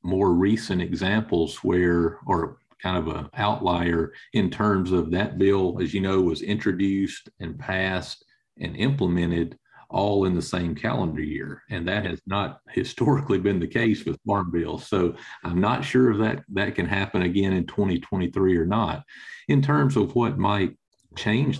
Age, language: 40-59, English